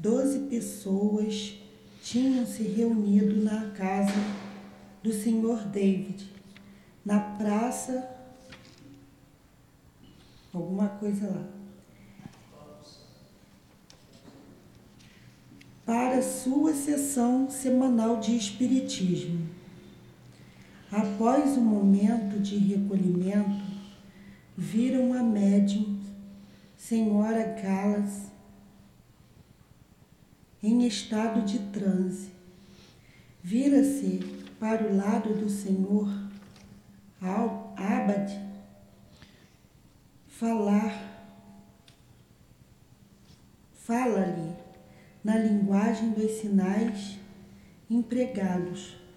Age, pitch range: 40-59, 195-230 Hz